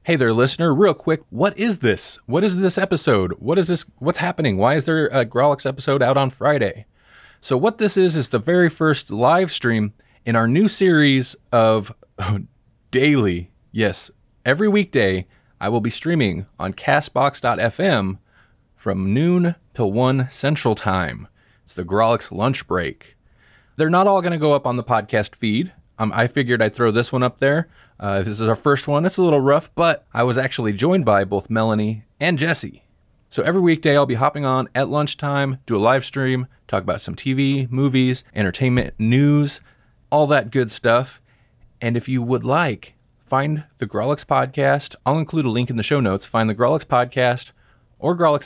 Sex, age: male, 20-39